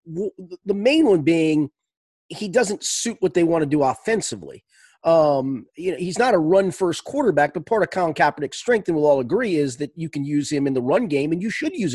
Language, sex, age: English, male, 30-49